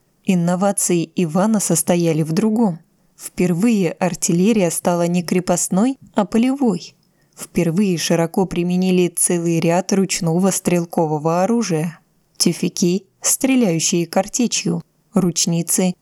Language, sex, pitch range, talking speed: Russian, female, 170-200 Hz, 90 wpm